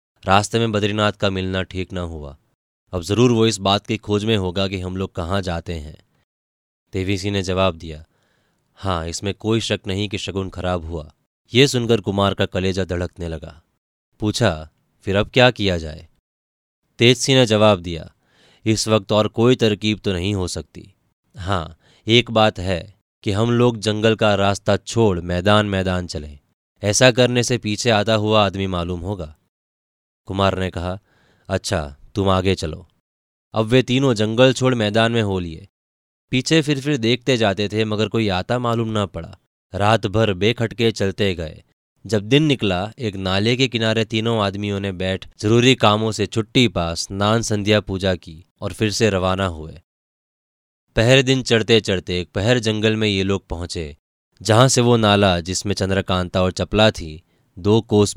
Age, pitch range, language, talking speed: 20-39, 90-110 Hz, Hindi, 170 wpm